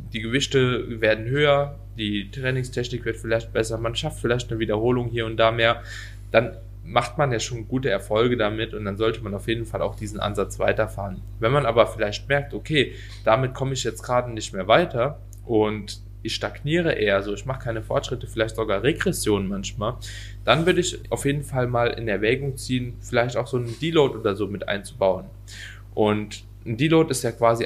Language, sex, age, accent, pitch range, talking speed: German, male, 20-39, German, 105-125 Hz, 195 wpm